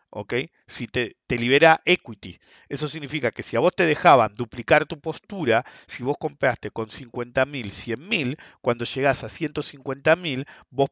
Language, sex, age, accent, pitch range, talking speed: English, male, 50-69, Argentinian, 115-155 Hz, 155 wpm